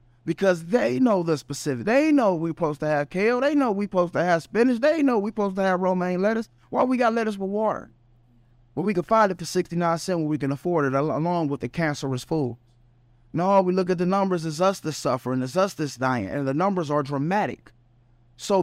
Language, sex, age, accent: English, male, 20-39, American